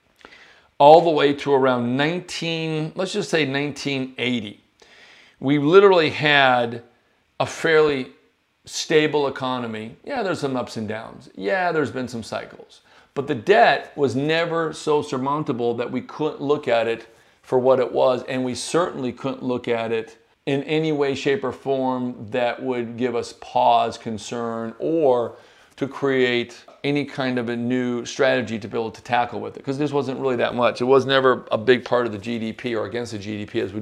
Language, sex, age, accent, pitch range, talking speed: English, male, 40-59, American, 115-140 Hz, 180 wpm